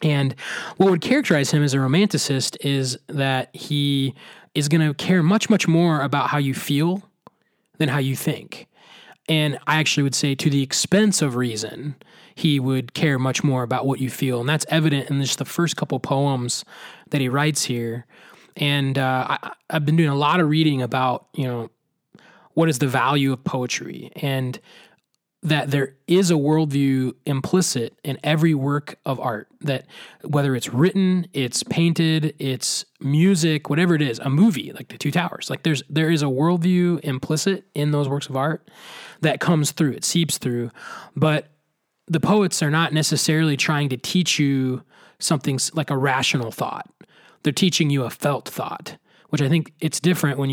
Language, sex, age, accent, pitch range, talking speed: English, male, 20-39, American, 135-165 Hz, 180 wpm